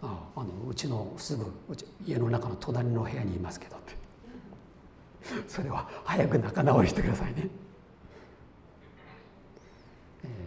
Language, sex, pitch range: Japanese, male, 115-185 Hz